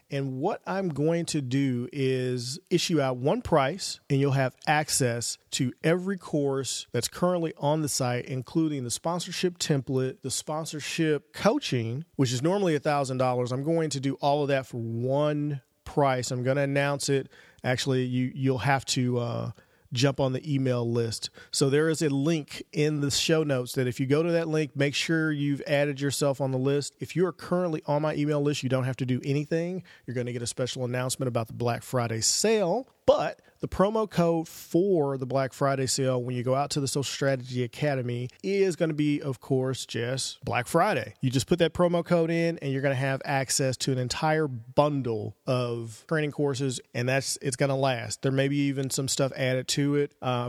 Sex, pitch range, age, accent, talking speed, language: male, 130-155 Hz, 40-59, American, 205 wpm, English